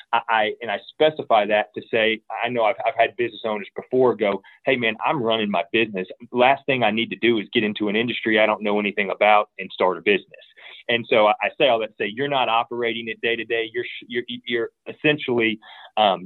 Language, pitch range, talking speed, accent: English, 105-130 Hz, 235 wpm, American